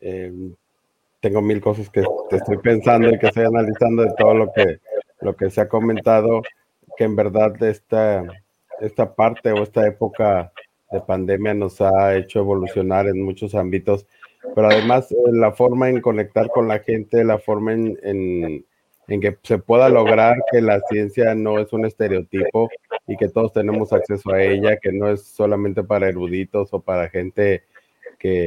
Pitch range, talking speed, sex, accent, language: 95-110 Hz, 175 wpm, male, Mexican, Spanish